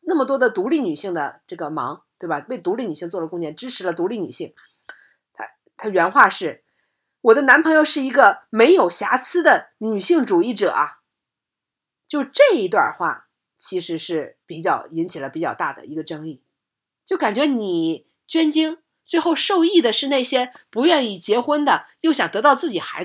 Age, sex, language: 50-69, female, Chinese